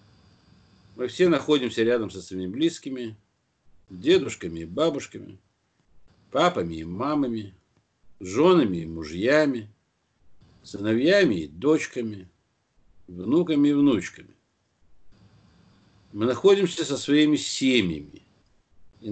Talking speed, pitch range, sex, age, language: 90 wpm, 95-145 Hz, male, 60-79, Russian